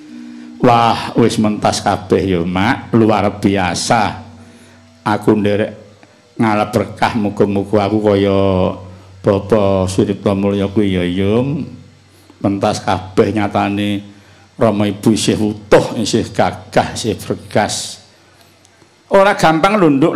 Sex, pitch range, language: male, 105-165 Hz, Indonesian